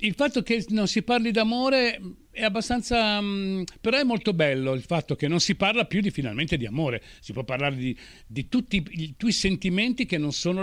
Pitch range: 125-200 Hz